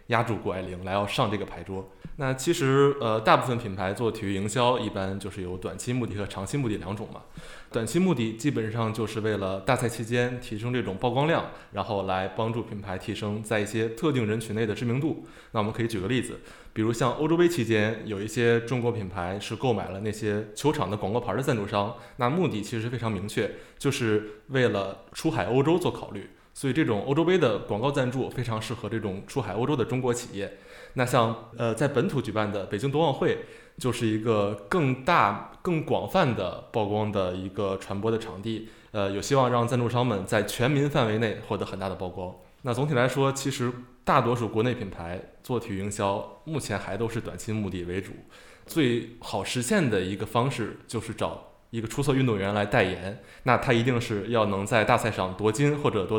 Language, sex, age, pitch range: Chinese, male, 20-39, 100-125 Hz